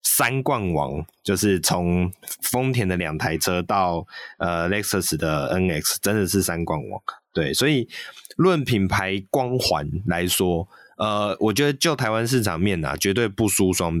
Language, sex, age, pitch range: Chinese, male, 20-39, 90-125 Hz